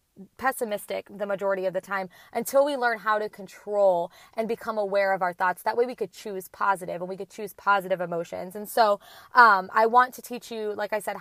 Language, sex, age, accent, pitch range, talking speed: English, female, 20-39, American, 195-250 Hz, 220 wpm